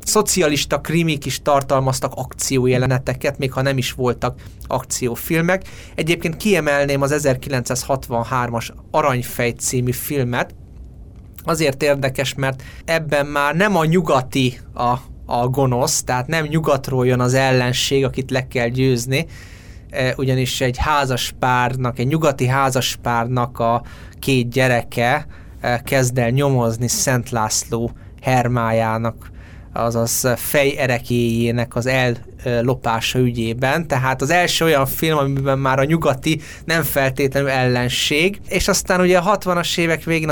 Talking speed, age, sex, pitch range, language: 120 wpm, 20-39, male, 120-145 Hz, Hungarian